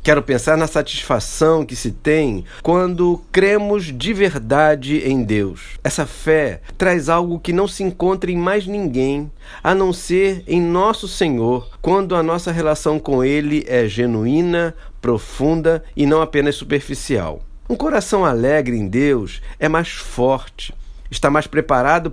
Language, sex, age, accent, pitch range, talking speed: Portuguese, male, 50-69, Brazilian, 130-180 Hz, 145 wpm